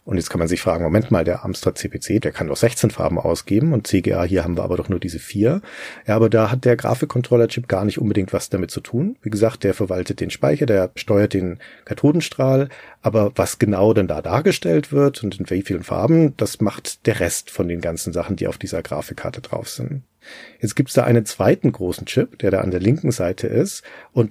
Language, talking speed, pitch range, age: German, 225 wpm, 95-120 Hz, 40-59